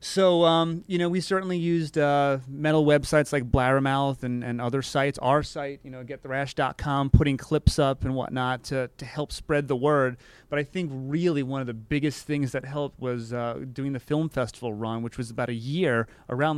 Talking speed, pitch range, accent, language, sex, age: 205 wpm, 125-155 Hz, American, English, male, 30-49